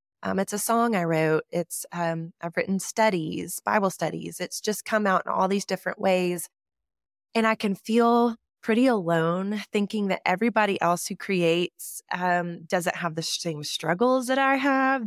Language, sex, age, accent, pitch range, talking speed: English, female, 20-39, American, 170-215 Hz, 170 wpm